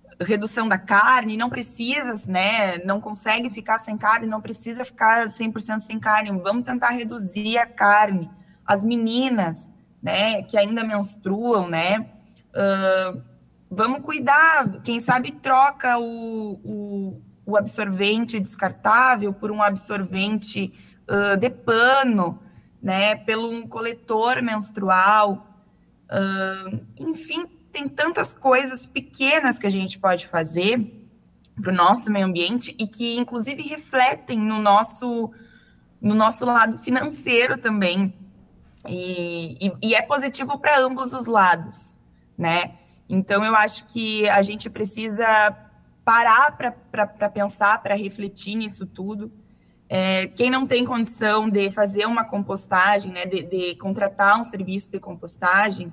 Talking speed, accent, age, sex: 125 wpm, Brazilian, 20-39, female